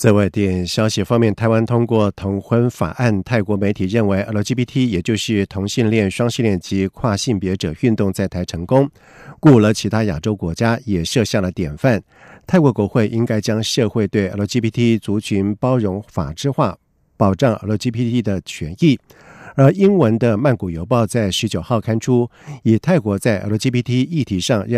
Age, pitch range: 50-69, 100-130 Hz